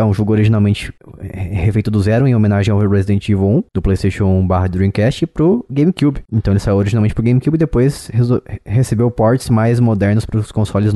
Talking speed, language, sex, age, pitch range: 190 wpm, Portuguese, male, 20-39, 100-120 Hz